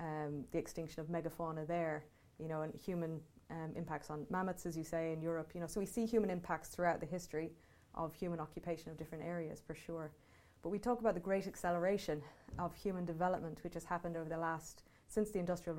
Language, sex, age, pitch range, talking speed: English, female, 20-39, 160-180 Hz, 210 wpm